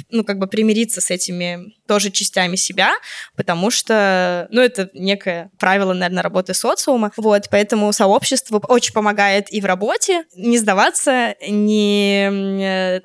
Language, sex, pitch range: Russian, female, 190-220 Hz